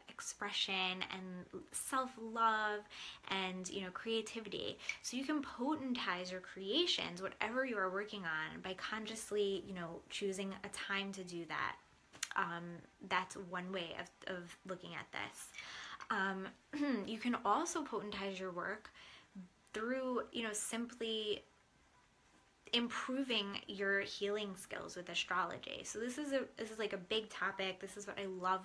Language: English